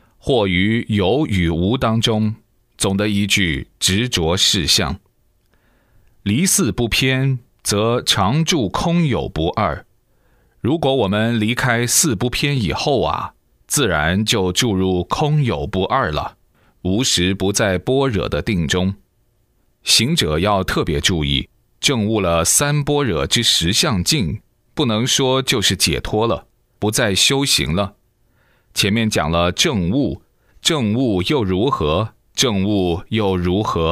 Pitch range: 95-120 Hz